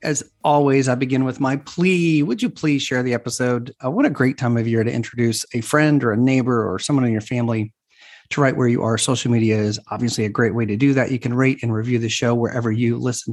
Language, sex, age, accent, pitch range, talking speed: English, male, 40-59, American, 115-145 Hz, 255 wpm